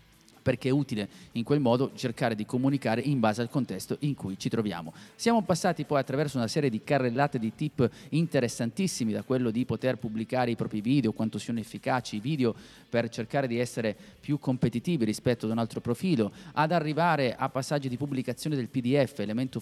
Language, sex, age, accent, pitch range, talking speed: Italian, male, 30-49, native, 110-140 Hz, 185 wpm